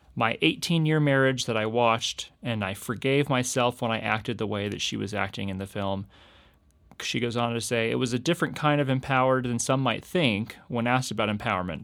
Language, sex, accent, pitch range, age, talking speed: English, male, American, 115-140 Hz, 30-49, 215 wpm